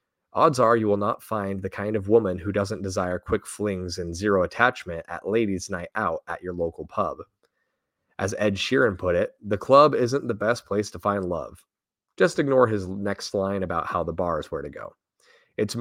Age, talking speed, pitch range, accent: 30-49, 205 wpm, 95-115 Hz, American